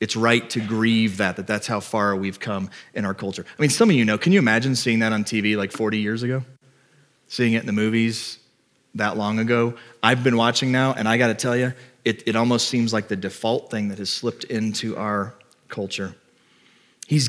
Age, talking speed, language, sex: 30-49, 220 wpm, English, male